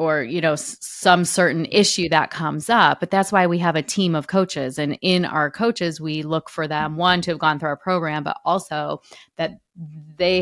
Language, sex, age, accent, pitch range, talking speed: English, female, 30-49, American, 155-180 Hz, 215 wpm